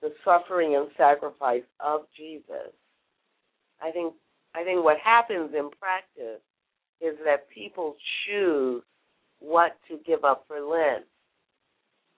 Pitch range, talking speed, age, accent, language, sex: 130-165 Hz, 120 wpm, 60-79, American, English, female